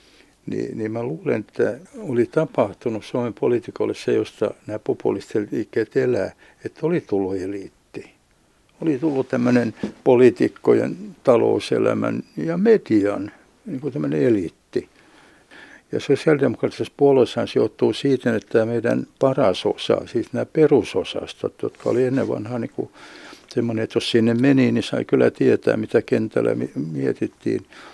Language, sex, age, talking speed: Finnish, male, 60-79, 130 wpm